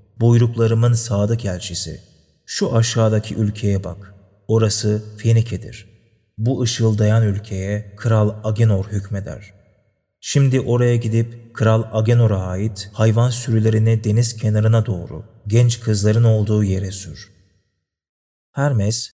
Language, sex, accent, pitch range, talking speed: Turkish, male, native, 100-120 Hz, 100 wpm